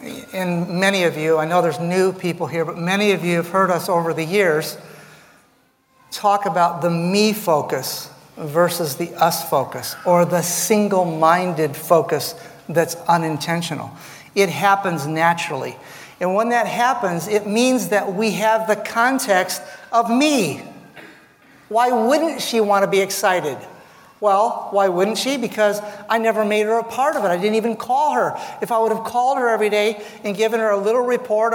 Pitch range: 175-225 Hz